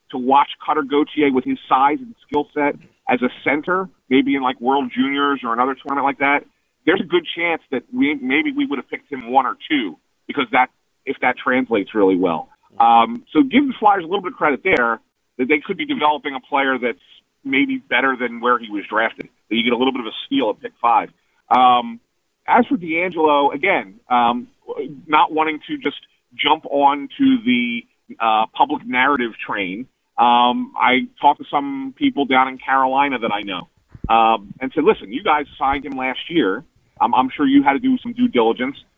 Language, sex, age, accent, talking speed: English, male, 40-59, American, 200 wpm